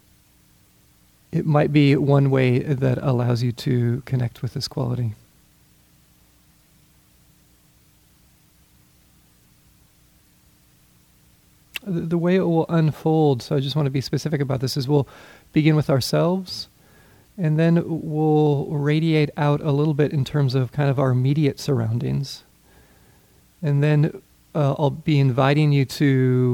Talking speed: 130 wpm